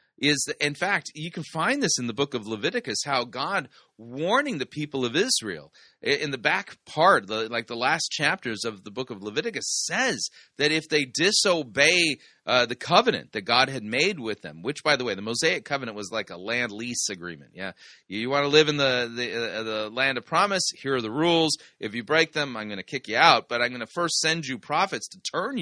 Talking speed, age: 230 wpm, 30-49